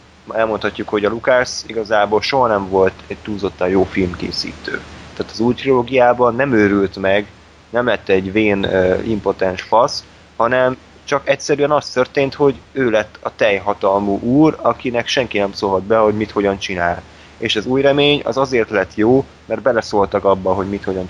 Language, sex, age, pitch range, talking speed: Hungarian, male, 20-39, 95-115 Hz, 175 wpm